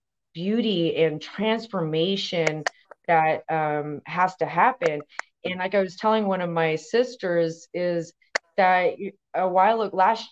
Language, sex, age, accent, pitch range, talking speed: English, female, 30-49, American, 165-205 Hz, 135 wpm